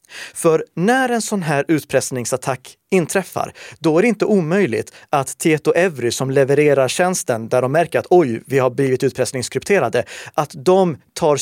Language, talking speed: Swedish, 160 wpm